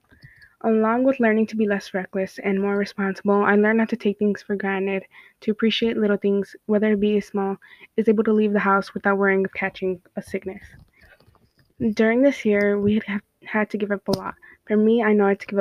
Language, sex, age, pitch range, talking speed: English, female, 20-39, 190-215 Hz, 215 wpm